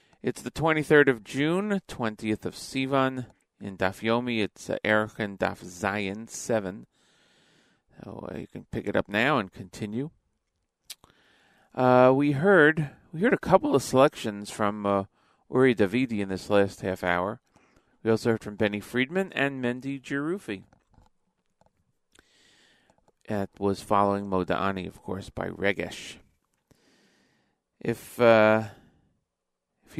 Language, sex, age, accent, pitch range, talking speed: English, male, 40-59, American, 100-130 Hz, 130 wpm